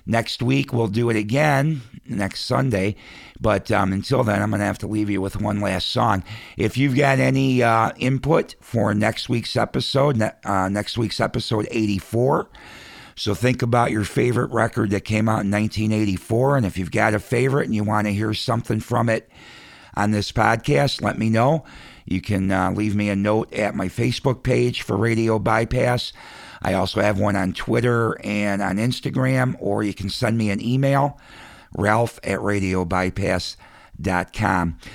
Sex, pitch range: male, 100-120 Hz